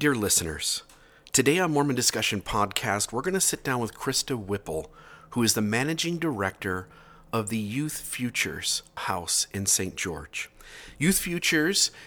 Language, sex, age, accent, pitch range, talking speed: English, male, 40-59, American, 105-135 Hz, 150 wpm